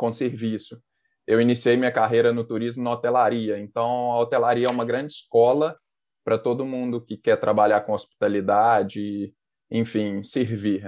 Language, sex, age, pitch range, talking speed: Portuguese, male, 20-39, 115-150 Hz, 150 wpm